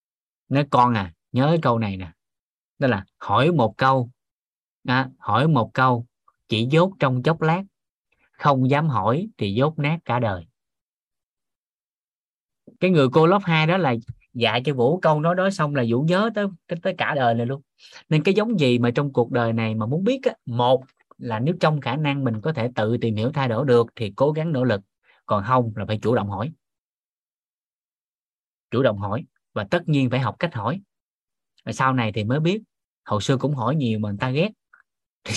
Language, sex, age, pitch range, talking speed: Vietnamese, male, 20-39, 115-150 Hz, 200 wpm